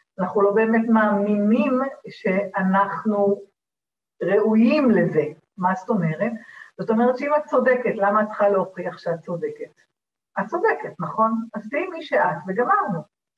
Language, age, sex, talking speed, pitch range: Hebrew, 40-59, female, 130 wpm, 195-255 Hz